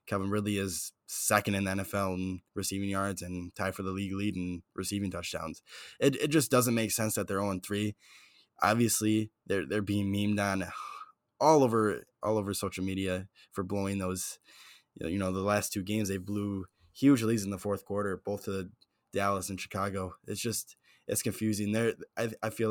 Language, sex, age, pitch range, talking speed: English, male, 10-29, 95-105 Hz, 195 wpm